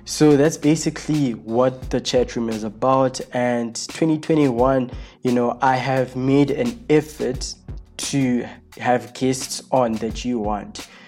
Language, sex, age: English, male, 20-39